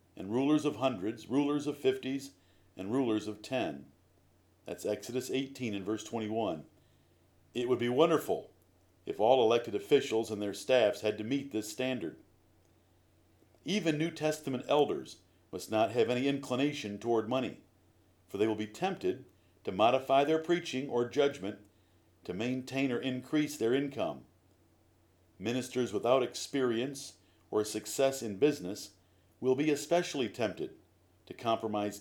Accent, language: American, English